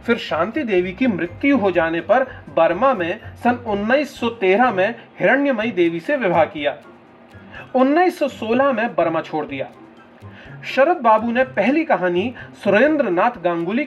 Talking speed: 130 wpm